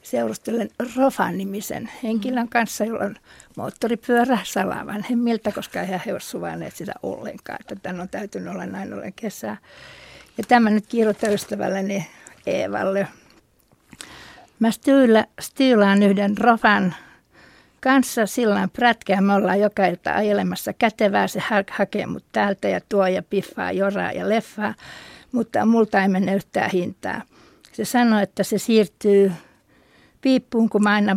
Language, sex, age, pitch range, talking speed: Finnish, female, 60-79, 195-230 Hz, 130 wpm